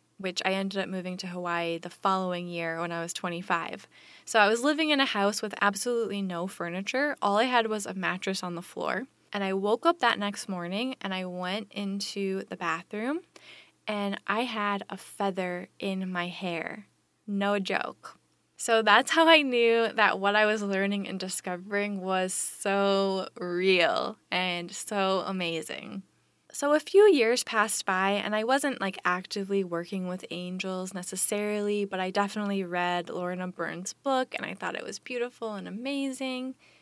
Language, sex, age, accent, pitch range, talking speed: English, female, 20-39, American, 180-210 Hz, 170 wpm